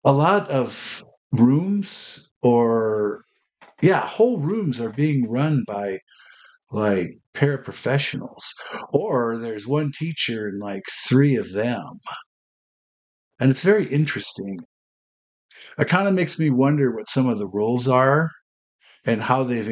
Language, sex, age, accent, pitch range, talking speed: English, male, 50-69, American, 105-145 Hz, 130 wpm